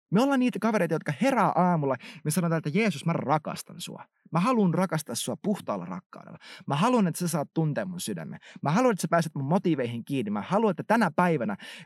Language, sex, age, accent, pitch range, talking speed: Finnish, male, 30-49, native, 145-195 Hz, 205 wpm